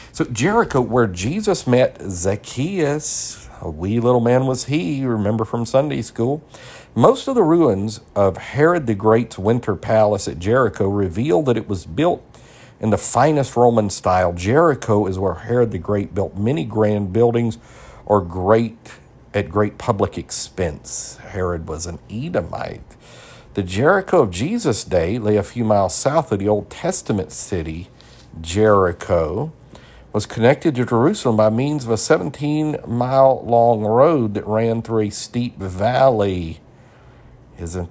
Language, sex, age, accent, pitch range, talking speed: English, male, 50-69, American, 95-125 Hz, 145 wpm